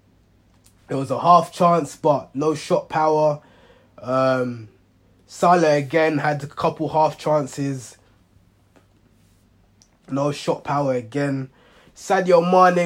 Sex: male